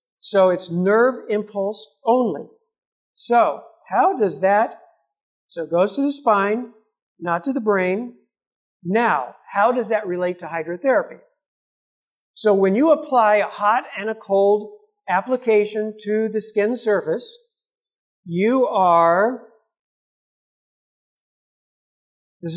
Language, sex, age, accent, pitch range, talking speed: English, male, 50-69, American, 185-255 Hz, 115 wpm